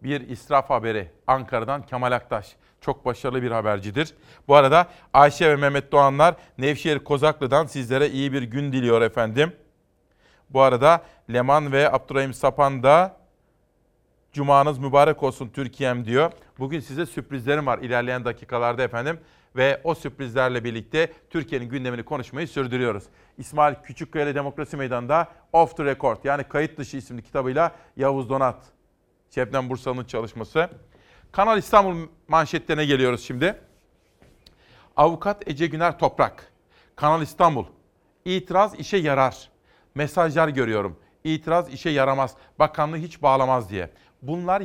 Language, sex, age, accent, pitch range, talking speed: Turkish, male, 40-59, native, 130-160 Hz, 125 wpm